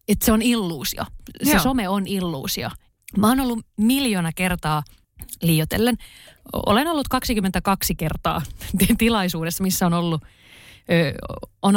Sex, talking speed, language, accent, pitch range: female, 115 wpm, Finnish, native, 160-195 Hz